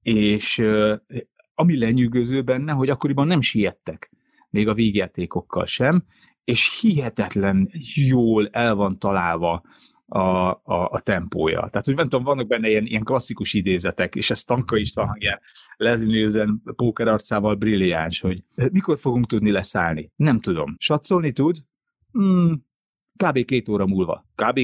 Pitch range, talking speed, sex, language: 110-145 Hz, 140 wpm, male, Hungarian